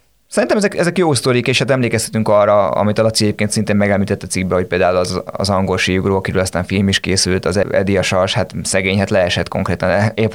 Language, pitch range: Hungarian, 95-110 Hz